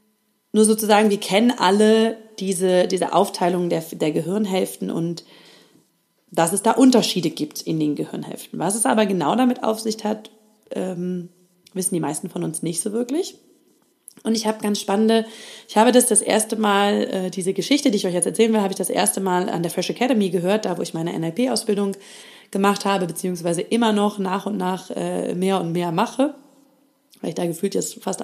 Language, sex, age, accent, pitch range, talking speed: German, female, 30-49, German, 180-220 Hz, 195 wpm